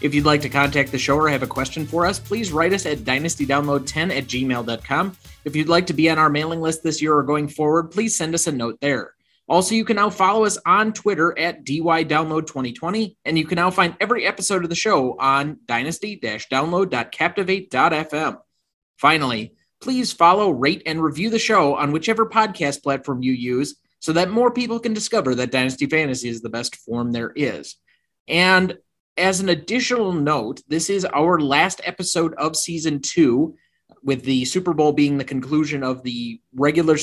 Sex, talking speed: male, 185 wpm